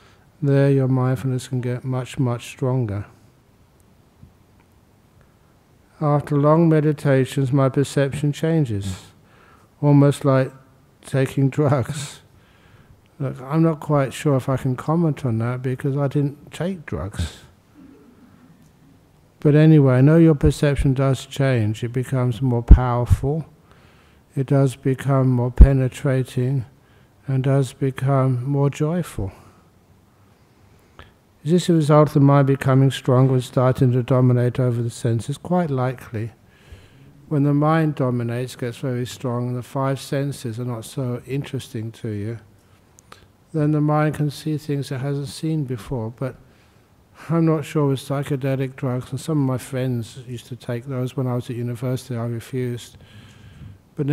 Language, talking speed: English, 135 wpm